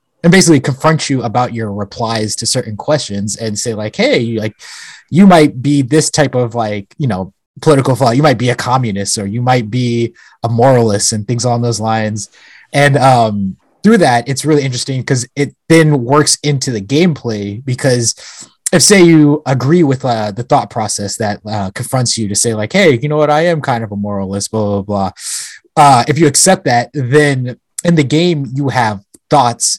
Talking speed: 200 wpm